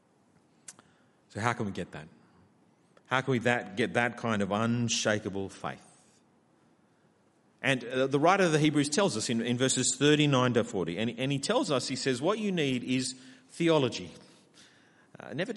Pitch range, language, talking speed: 115-160 Hz, English, 175 wpm